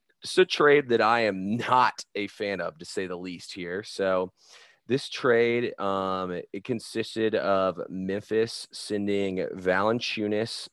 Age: 30-49